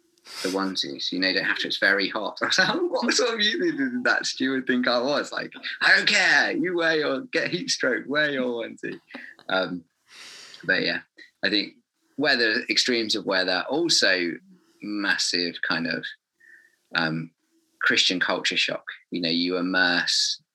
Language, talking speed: English, 170 wpm